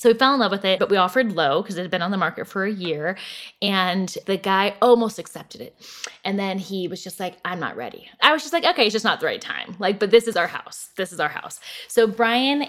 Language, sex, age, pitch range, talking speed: English, female, 10-29, 180-230 Hz, 280 wpm